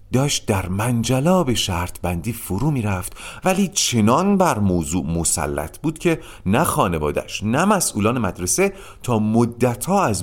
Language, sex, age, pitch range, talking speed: Persian, male, 40-59, 95-140 Hz, 140 wpm